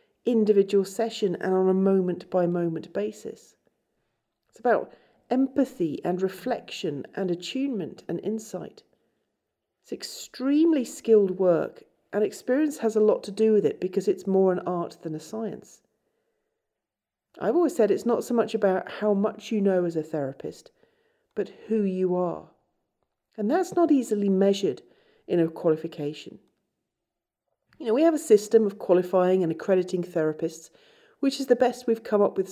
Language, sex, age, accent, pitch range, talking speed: English, female, 40-59, British, 185-270 Hz, 155 wpm